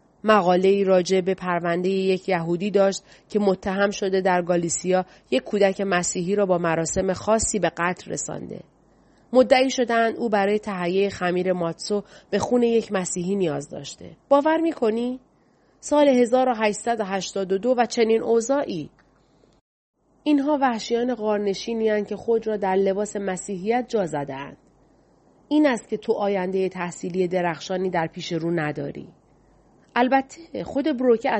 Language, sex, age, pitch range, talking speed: Persian, female, 30-49, 185-235 Hz, 130 wpm